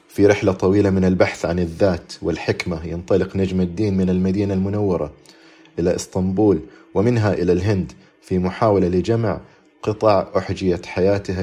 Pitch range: 85-105 Hz